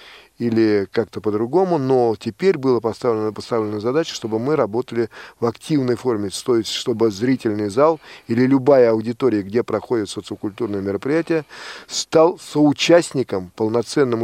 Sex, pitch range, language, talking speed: male, 110-145 Hz, Russian, 125 wpm